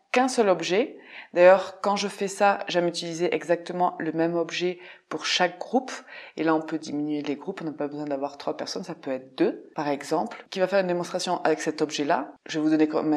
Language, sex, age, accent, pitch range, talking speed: French, female, 20-39, French, 155-195 Hz, 230 wpm